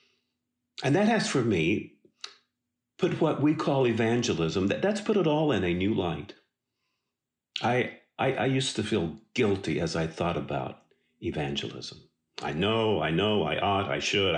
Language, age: English, 50-69